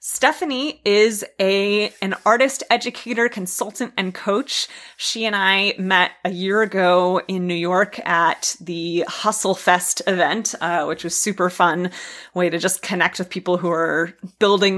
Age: 30-49